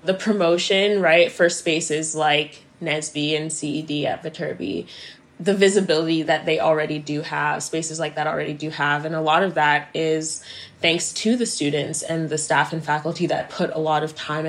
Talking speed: 185 wpm